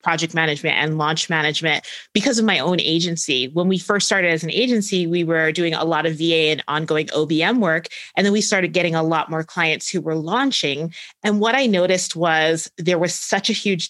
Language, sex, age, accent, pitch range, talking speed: English, female, 30-49, American, 160-200 Hz, 215 wpm